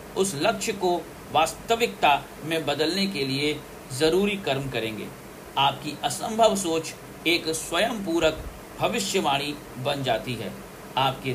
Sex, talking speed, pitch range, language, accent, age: male, 110 wpm, 145-195 Hz, Hindi, native, 50-69